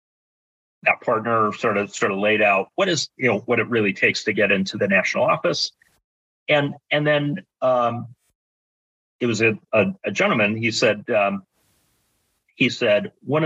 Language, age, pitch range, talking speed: English, 40-59, 95-135 Hz, 170 wpm